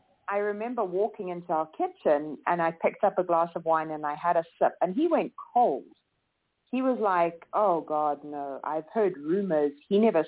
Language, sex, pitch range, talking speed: English, female, 160-205 Hz, 200 wpm